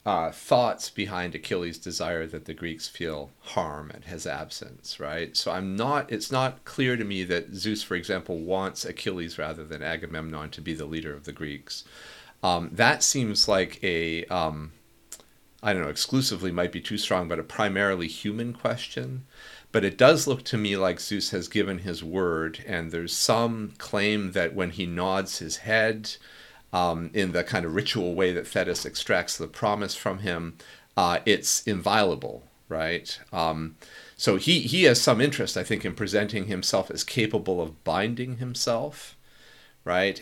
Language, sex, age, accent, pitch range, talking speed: English, male, 40-59, American, 85-110 Hz, 170 wpm